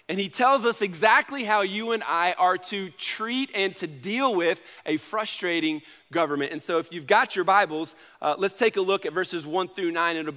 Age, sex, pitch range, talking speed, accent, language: 40-59, male, 160-215 Hz, 215 wpm, American, English